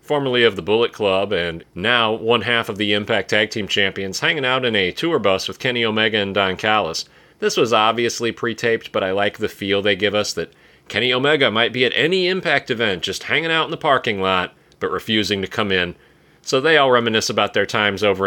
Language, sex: English, male